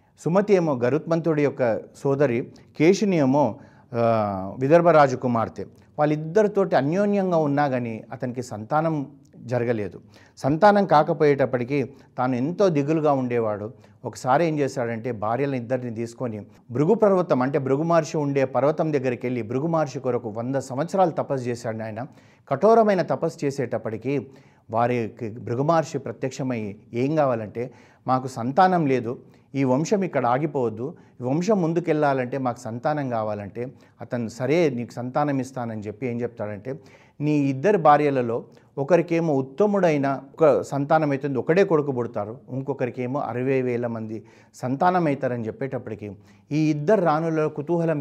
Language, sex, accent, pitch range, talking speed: Telugu, male, native, 120-150 Hz, 115 wpm